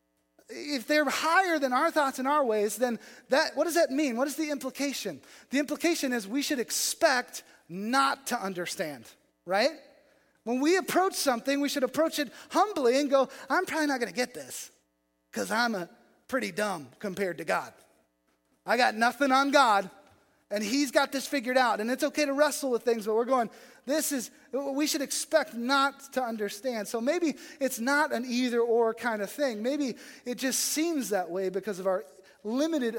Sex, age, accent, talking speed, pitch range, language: male, 30-49, American, 190 wpm, 185-280 Hz, English